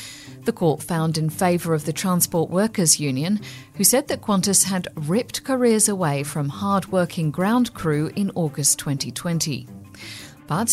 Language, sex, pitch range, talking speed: English, female, 150-205 Hz, 145 wpm